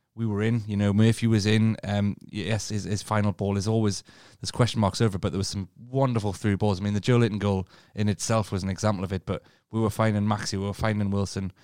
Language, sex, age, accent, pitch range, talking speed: English, male, 30-49, British, 100-115 Hz, 255 wpm